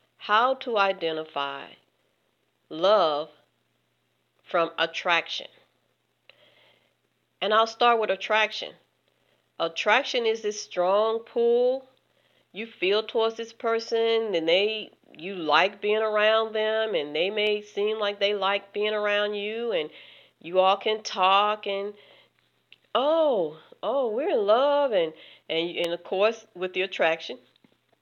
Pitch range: 180-210 Hz